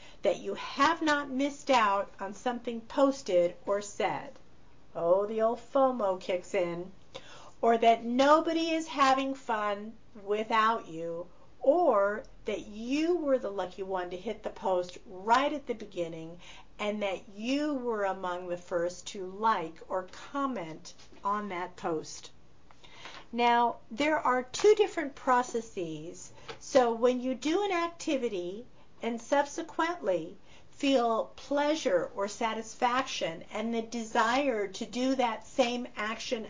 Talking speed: 130 wpm